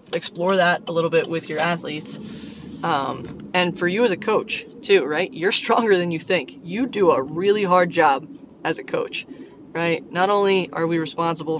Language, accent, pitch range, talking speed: English, American, 160-185 Hz, 190 wpm